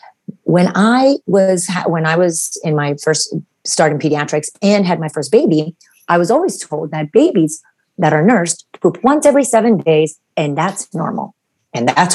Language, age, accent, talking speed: English, 30-49, American, 180 wpm